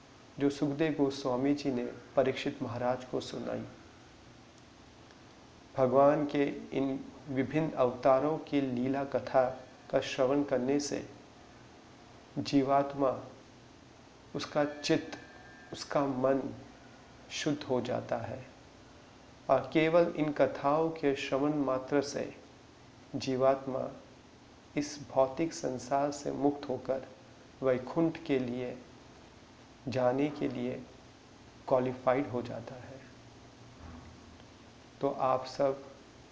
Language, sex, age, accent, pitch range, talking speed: Hindi, male, 40-59, native, 125-140 Hz, 95 wpm